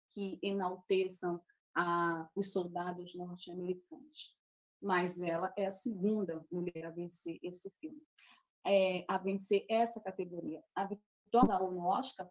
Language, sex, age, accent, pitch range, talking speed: Portuguese, female, 30-49, Brazilian, 190-285 Hz, 115 wpm